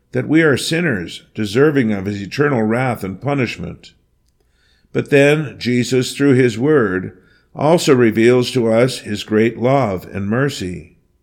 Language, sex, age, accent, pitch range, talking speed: English, male, 50-69, American, 105-135 Hz, 140 wpm